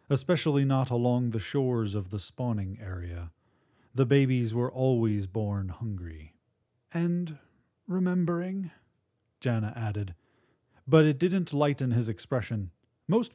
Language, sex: English, male